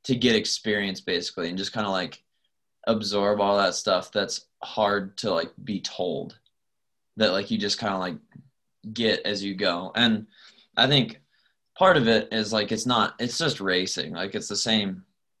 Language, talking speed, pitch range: English, 185 wpm, 95-110 Hz